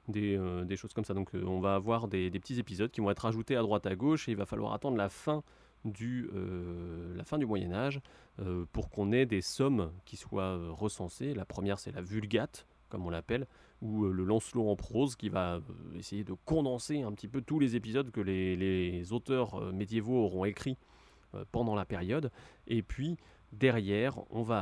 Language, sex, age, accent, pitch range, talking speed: French, male, 30-49, French, 95-120 Hz, 215 wpm